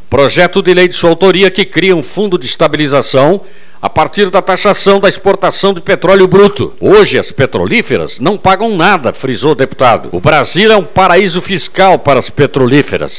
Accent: Brazilian